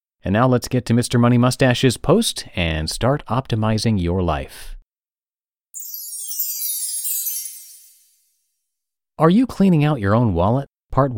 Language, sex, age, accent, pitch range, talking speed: English, male, 30-49, American, 95-130 Hz, 120 wpm